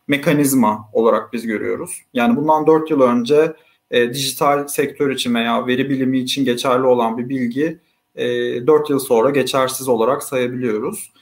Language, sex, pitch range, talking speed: Turkish, male, 130-160 Hz, 150 wpm